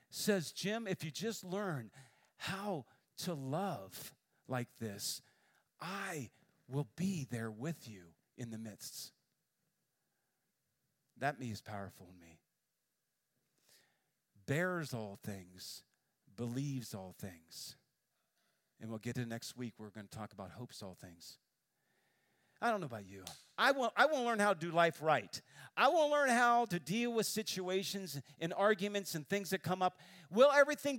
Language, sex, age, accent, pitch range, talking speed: English, male, 40-59, American, 115-190 Hz, 145 wpm